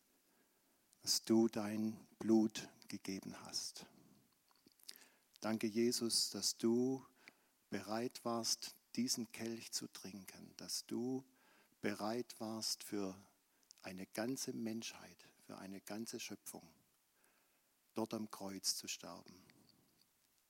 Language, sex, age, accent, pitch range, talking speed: German, male, 60-79, German, 105-120 Hz, 95 wpm